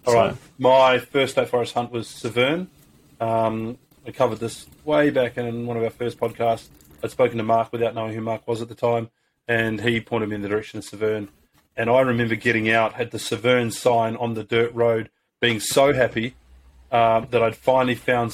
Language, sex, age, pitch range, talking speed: English, male, 30-49, 110-125 Hz, 205 wpm